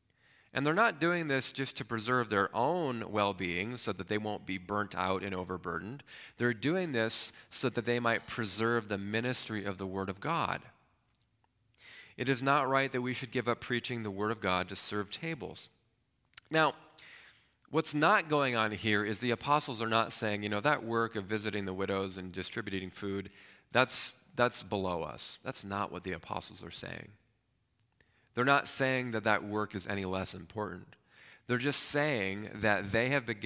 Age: 40-59